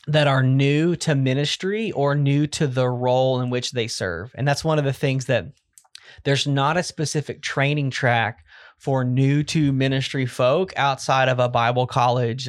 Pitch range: 125-150 Hz